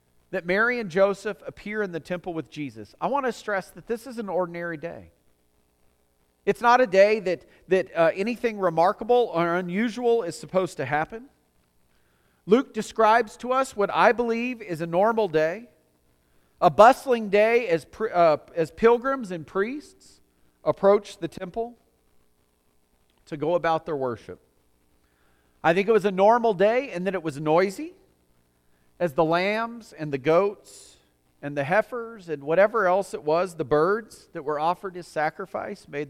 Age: 40-59